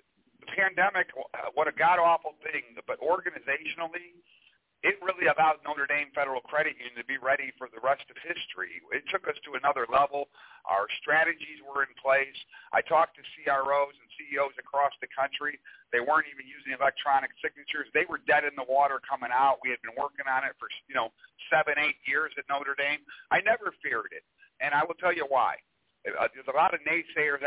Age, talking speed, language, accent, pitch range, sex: 50-69, 190 wpm, English, American, 135-155 Hz, male